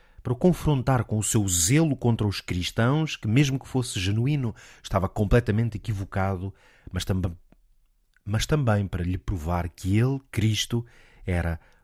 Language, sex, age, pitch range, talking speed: Portuguese, male, 40-59, 90-120 Hz, 140 wpm